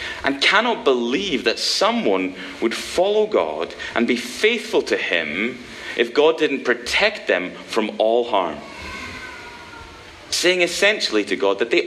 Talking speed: 135 wpm